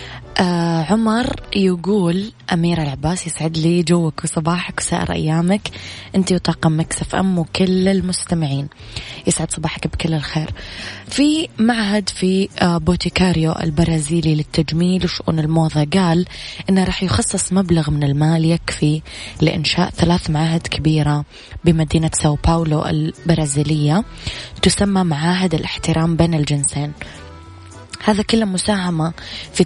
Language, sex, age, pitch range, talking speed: Arabic, female, 20-39, 150-175 Hz, 110 wpm